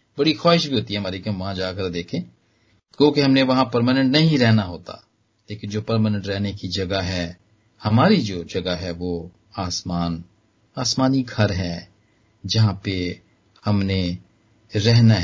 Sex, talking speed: male, 140 wpm